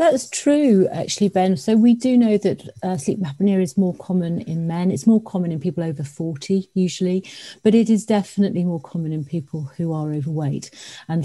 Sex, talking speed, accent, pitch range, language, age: female, 195 wpm, British, 160-195 Hz, English, 50-69